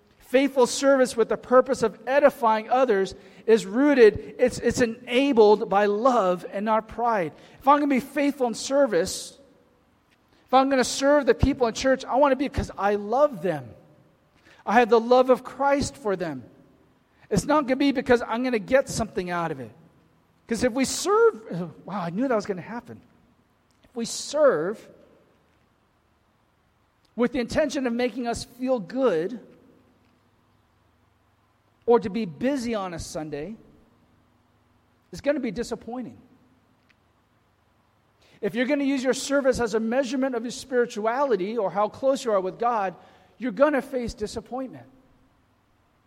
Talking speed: 165 wpm